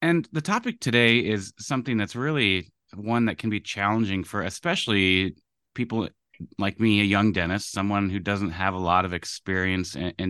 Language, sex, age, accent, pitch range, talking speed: English, male, 30-49, American, 90-110 Hz, 175 wpm